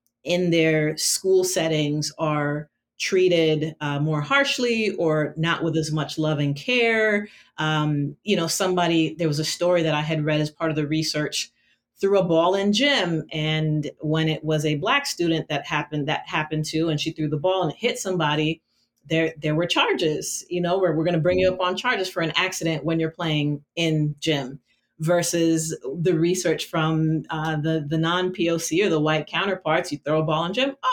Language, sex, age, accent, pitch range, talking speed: English, female, 30-49, American, 155-180 Hz, 195 wpm